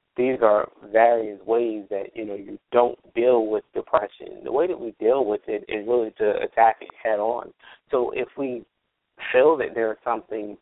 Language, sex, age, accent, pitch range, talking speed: English, male, 30-49, American, 105-135 Hz, 190 wpm